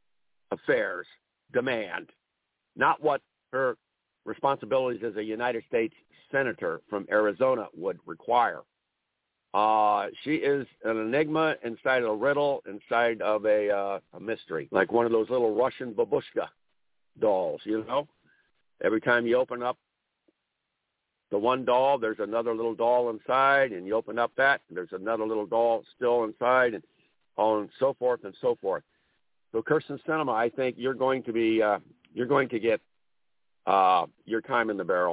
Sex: male